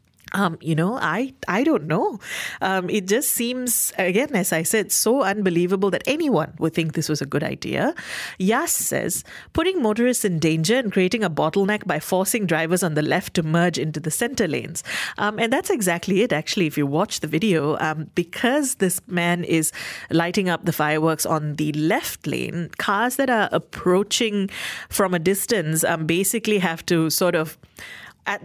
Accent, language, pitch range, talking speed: Indian, English, 165-220 Hz, 180 wpm